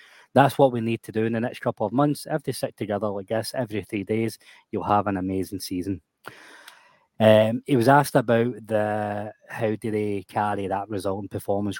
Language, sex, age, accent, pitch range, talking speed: English, male, 20-39, British, 100-115 Hz, 205 wpm